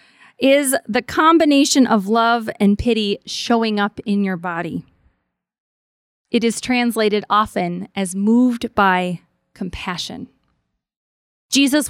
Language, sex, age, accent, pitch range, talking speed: English, female, 20-39, American, 185-240 Hz, 105 wpm